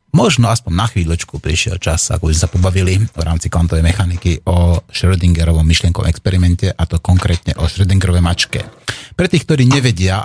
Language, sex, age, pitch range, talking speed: Slovak, male, 30-49, 90-115 Hz, 165 wpm